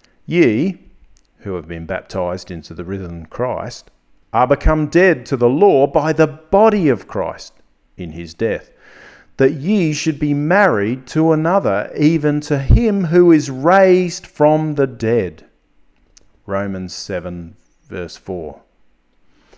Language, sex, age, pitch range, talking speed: English, male, 40-59, 100-150 Hz, 125 wpm